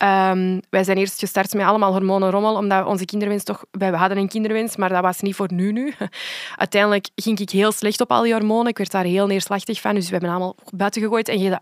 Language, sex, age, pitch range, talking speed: Dutch, female, 20-39, 195-225 Hz, 240 wpm